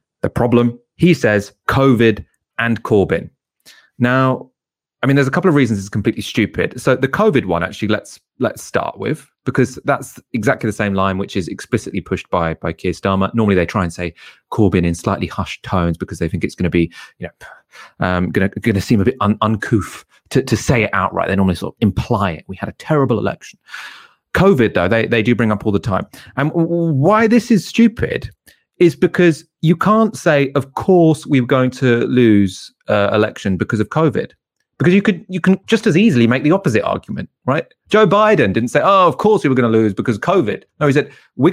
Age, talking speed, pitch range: 30-49, 210 wpm, 100-145 Hz